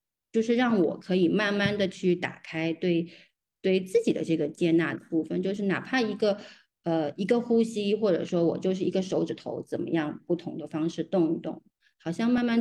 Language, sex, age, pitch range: Chinese, female, 20-39, 165-200 Hz